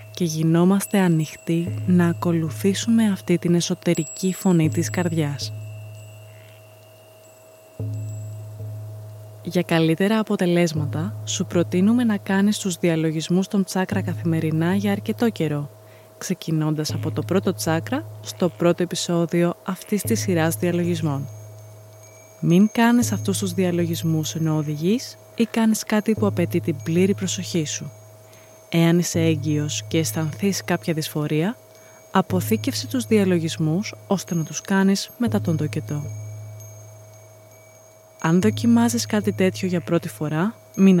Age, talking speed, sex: 20-39, 115 wpm, female